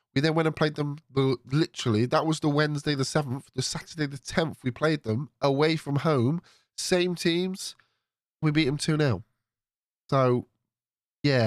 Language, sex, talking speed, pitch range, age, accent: English, male, 165 wpm, 110-145 Hz, 20-39, British